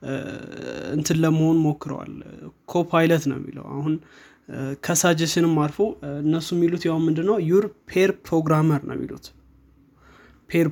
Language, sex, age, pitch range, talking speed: Amharic, male, 20-39, 145-170 Hz, 105 wpm